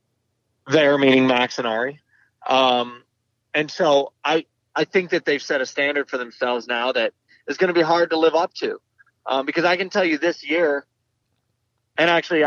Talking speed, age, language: 190 wpm, 30-49, English